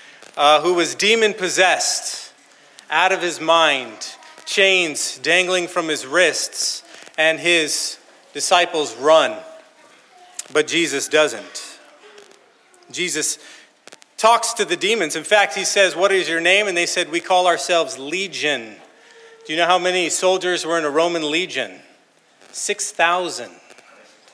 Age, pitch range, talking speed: 40-59, 160-205 Hz, 130 wpm